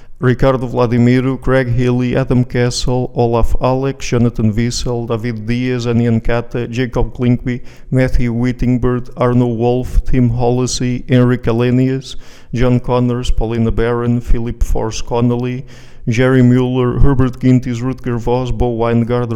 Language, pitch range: English, 120-130 Hz